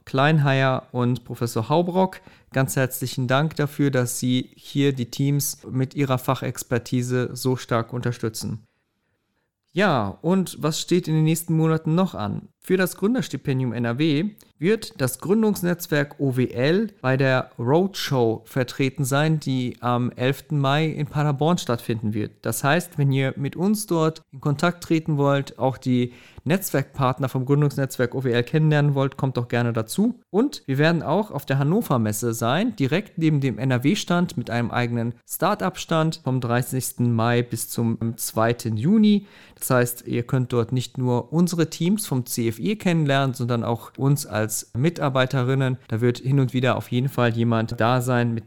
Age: 40-59